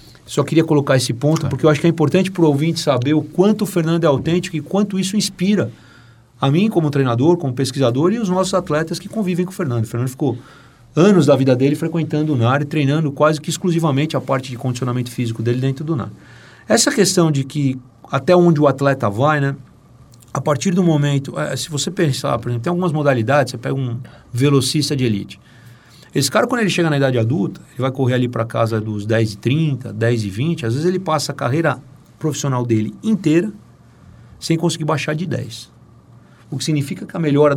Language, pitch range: Portuguese, 120-165 Hz